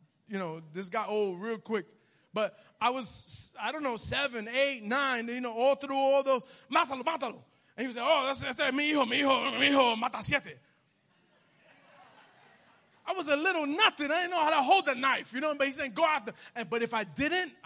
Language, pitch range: English, 210-290 Hz